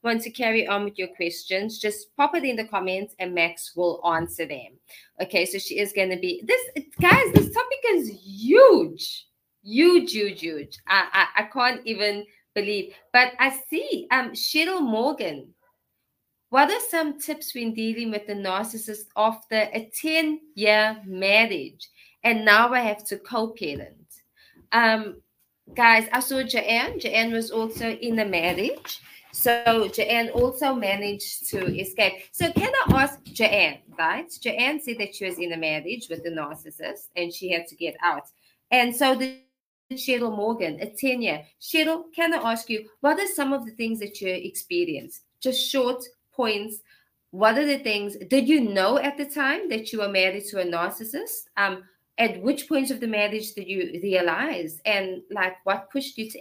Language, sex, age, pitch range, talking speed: English, female, 20-39, 195-265 Hz, 175 wpm